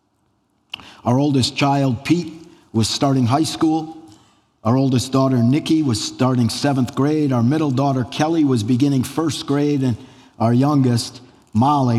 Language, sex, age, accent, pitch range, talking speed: English, male, 50-69, American, 110-140 Hz, 140 wpm